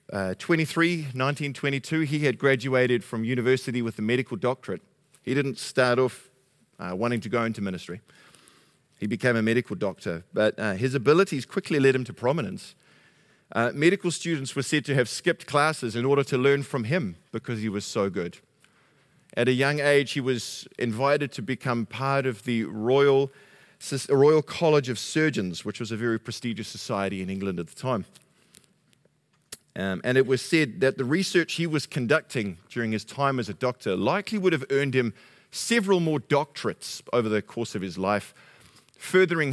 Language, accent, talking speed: English, Australian, 180 wpm